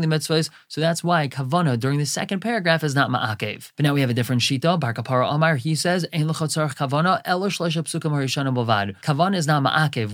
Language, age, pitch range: English, 30-49, 130-165 Hz